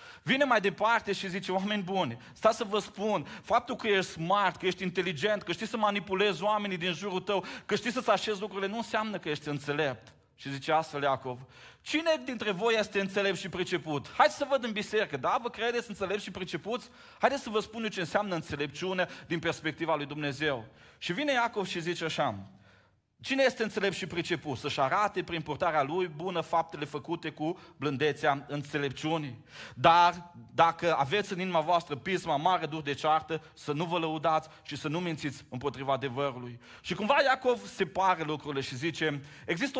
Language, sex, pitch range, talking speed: Romanian, male, 150-205 Hz, 180 wpm